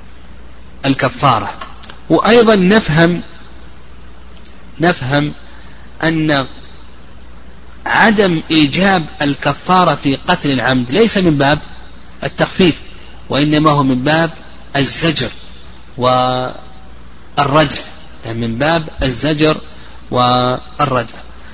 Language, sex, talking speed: Arabic, male, 70 wpm